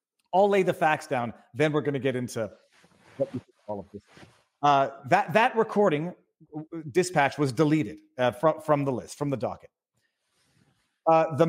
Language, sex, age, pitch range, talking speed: English, male, 40-59, 140-190 Hz, 160 wpm